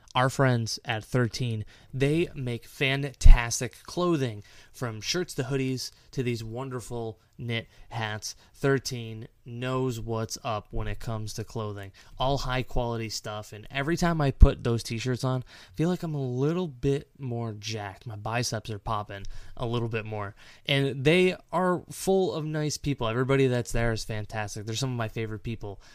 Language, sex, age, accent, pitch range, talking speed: English, male, 20-39, American, 110-160 Hz, 170 wpm